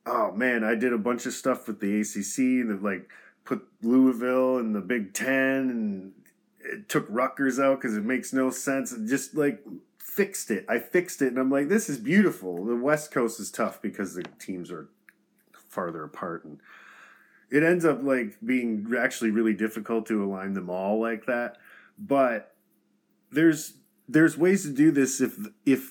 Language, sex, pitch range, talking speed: English, male, 110-140 Hz, 185 wpm